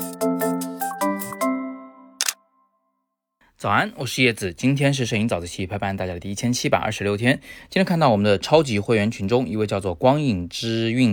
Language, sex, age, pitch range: Chinese, male, 20-39, 90-120 Hz